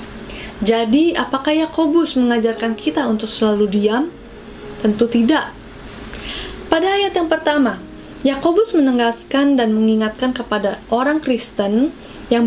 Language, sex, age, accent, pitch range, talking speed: Indonesian, female, 20-39, native, 225-290 Hz, 105 wpm